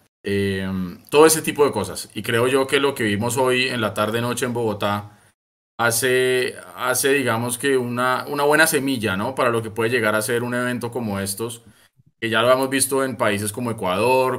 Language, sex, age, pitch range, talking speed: Spanish, male, 20-39, 105-125 Hz, 200 wpm